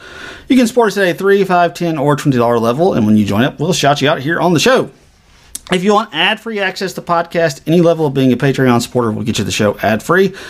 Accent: American